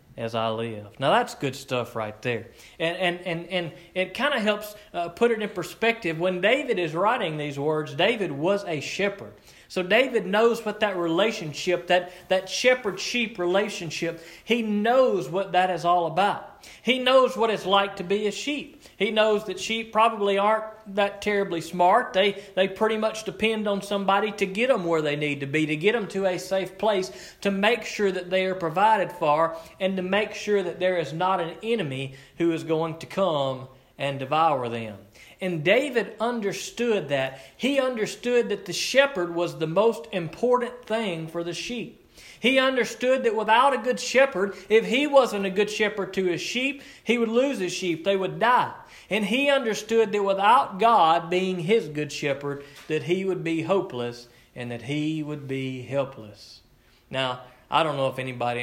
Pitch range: 150-215 Hz